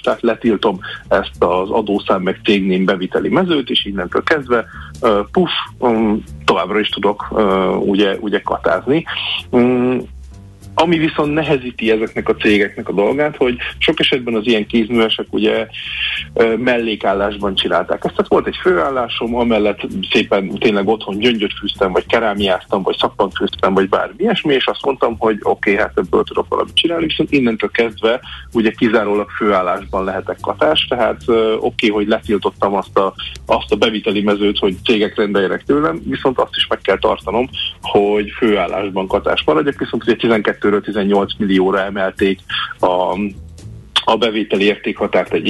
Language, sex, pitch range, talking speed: Hungarian, male, 95-115 Hz, 145 wpm